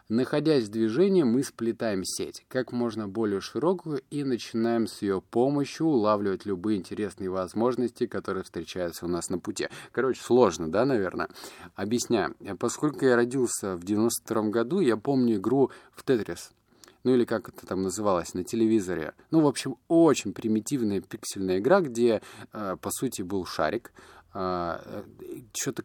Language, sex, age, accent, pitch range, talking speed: Russian, male, 20-39, native, 100-130 Hz, 145 wpm